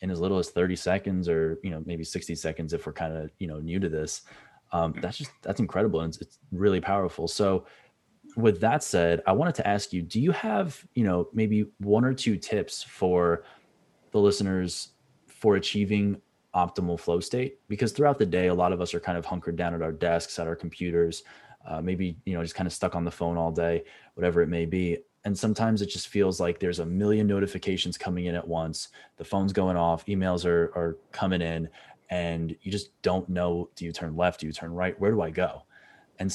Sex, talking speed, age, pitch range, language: male, 225 wpm, 20-39, 85-100 Hz, English